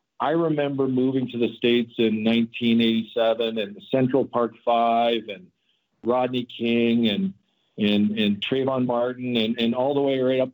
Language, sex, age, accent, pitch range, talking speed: English, male, 50-69, American, 115-135 Hz, 155 wpm